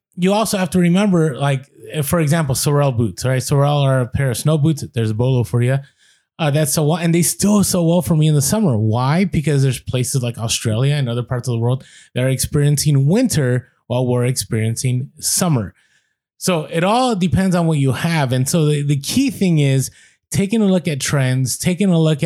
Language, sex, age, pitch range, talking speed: English, male, 20-39, 130-160 Hz, 220 wpm